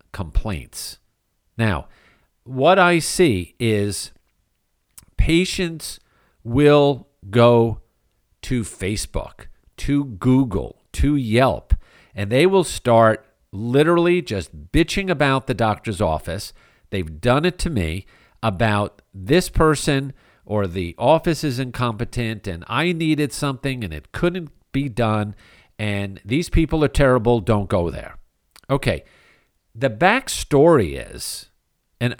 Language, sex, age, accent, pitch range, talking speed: English, male, 50-69, American, 100-140 Hz, 115 wpm